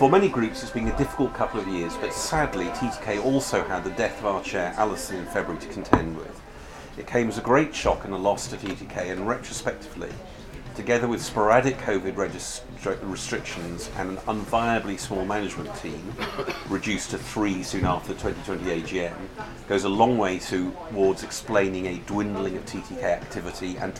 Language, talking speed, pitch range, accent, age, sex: English, 175 wpm, 95-120 Hz, British, 40-59, male